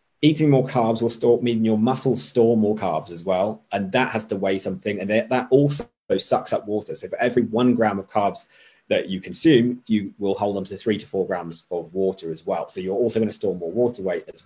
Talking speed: 235 wpm